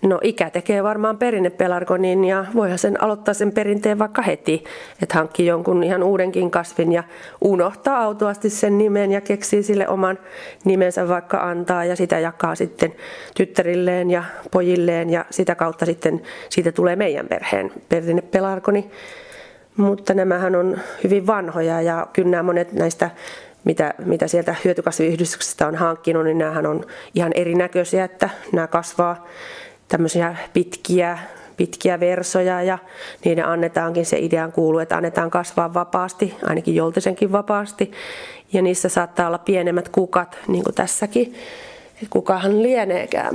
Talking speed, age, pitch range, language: 140 wpm, 30-49, 175-210 Hz, Finnish